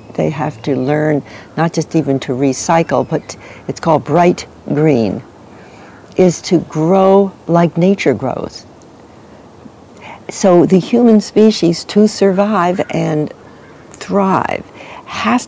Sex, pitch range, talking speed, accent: female, 155-205 Hz, 110 wpm, American